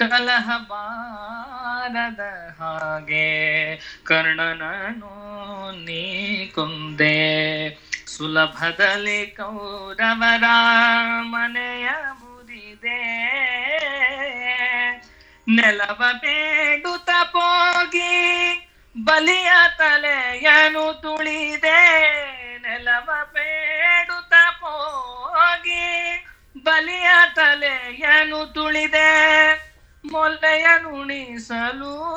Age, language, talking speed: 20-39, Kannada, 35 wpm